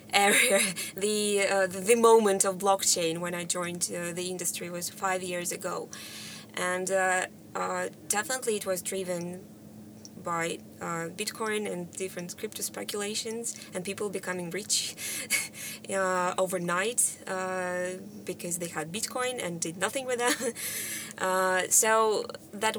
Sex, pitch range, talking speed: female, 180-205 Hz, 130 wpm